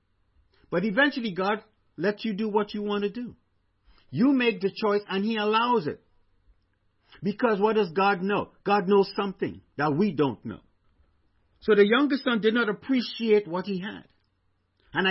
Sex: male